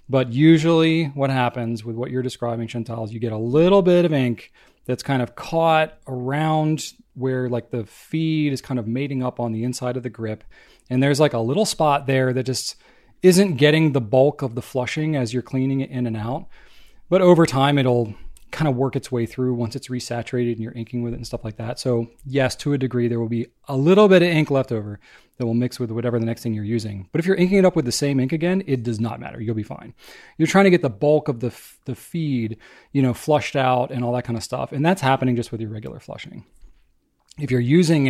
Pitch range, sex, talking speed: 115-145 Hz, male, 245 wpm